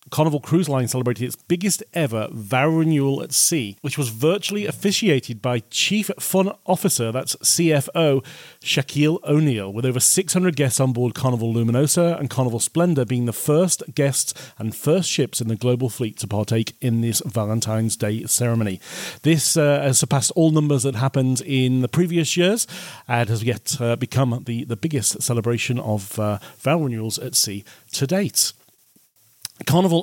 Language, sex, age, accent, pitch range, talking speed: English, male, 40-59, British, 115-145 Hz, 165 wpm